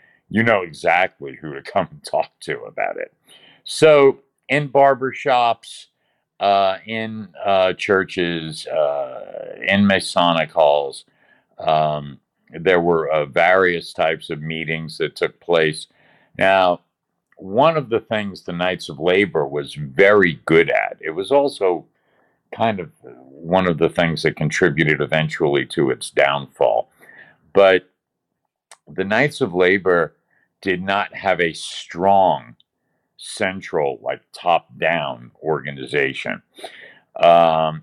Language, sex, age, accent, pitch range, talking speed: English, male, 50-69, American, 80-105 Hz, 120 wpm